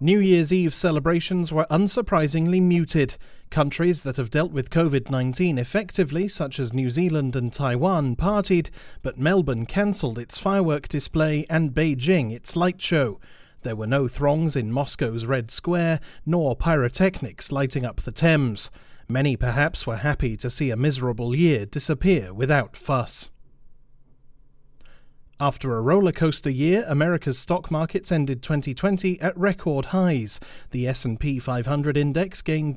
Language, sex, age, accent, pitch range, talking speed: English, male, 30-49, British, 130-170 Hz, 135 wpm